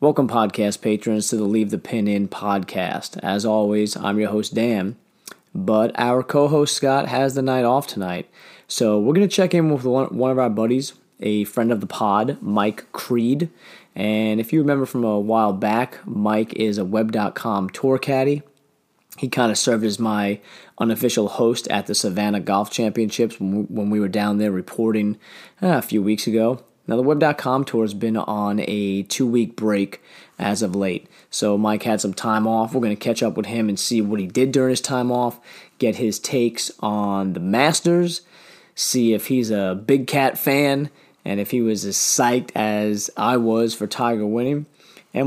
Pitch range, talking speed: 105-130 Hz, 185 wpm